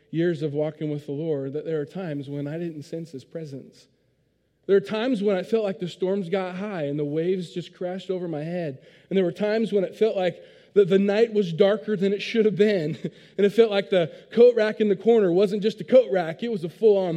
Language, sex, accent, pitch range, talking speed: English, male, American, 160-220 Hz, 255 wpm